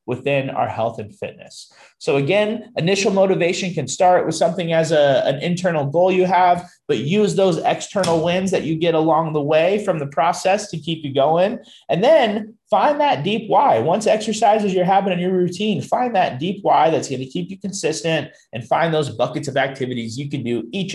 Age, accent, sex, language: 30-49, American, male, English